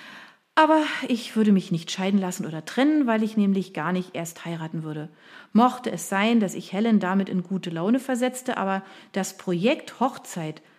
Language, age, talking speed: German, 40-59, 180 wpm